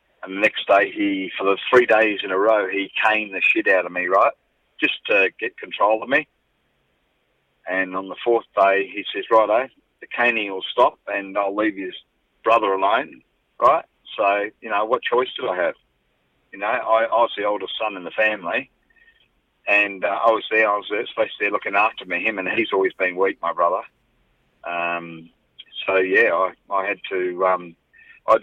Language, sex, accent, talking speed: English, male, Australian, 205 wpm